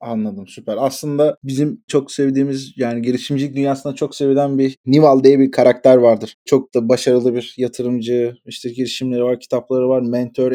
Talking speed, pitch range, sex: 160 wpm, 130-155 Hz, male